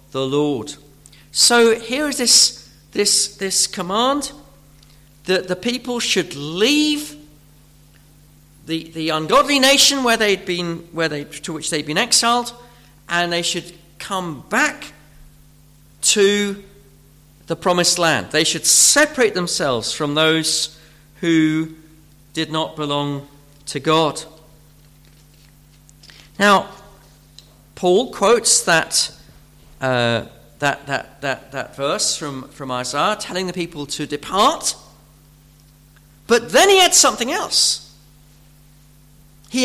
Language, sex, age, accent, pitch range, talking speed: English, male, 40-59, British, 145-205 Hz, 110 wpm